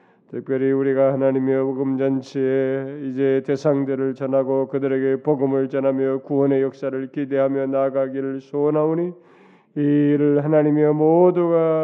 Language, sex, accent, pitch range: Korean, male, native, 130-145 Hz